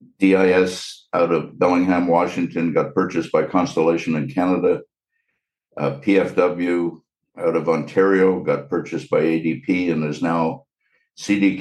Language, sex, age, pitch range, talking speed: English, male, 60-79, 85-95 Hz, 125 wpm